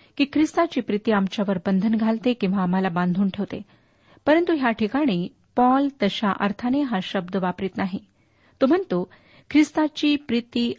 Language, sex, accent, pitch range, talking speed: Marathi, female, native, 200-275 Hz, 130 wpm